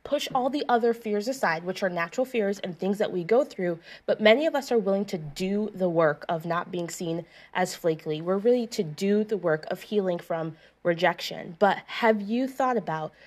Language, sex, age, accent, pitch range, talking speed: English, female, 20-39, American, 170-215 Hz, 215 wpm